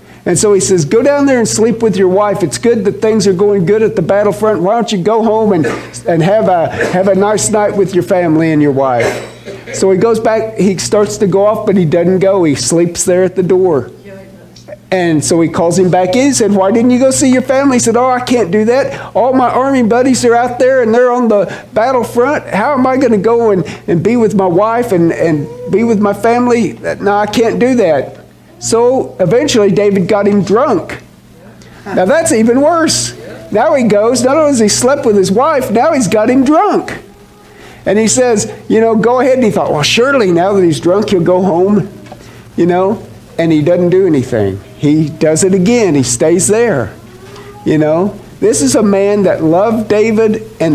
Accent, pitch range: American, 185-235 Hz